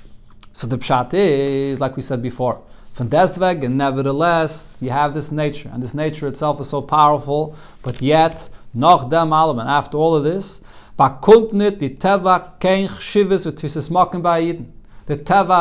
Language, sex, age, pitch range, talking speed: English, male, 40-59, 145-200 Hz, 115 wpm